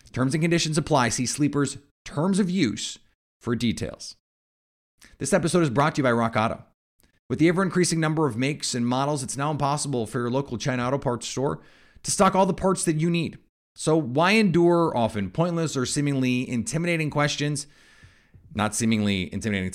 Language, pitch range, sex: English, 120-165 Hz, male